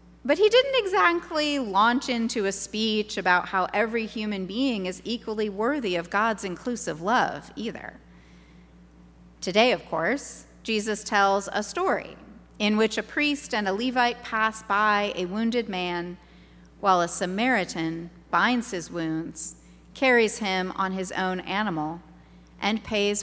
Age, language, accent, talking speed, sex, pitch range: 30-49, English, American, 140 wpm, female, 170-225 Hz